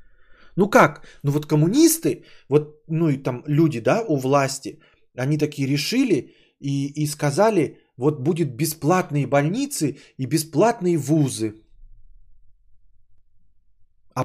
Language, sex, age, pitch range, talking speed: Bulgarian, male, 20-39, 130-200 Hz, 115 wpm